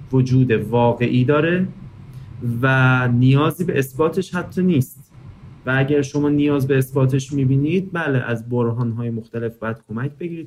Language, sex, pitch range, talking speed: Persian, male, 115-150 Hz, 130 wpm